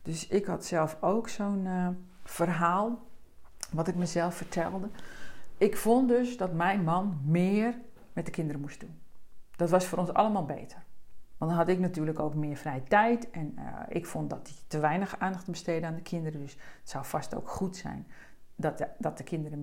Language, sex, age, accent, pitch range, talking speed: Dutch, female, 50-69, Dutch, 165-230 Hz, 195 wpm